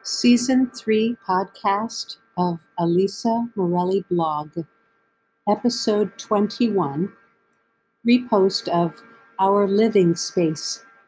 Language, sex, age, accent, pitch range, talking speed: English, female, 60-79, American, 175-225 Hz, 75 wpm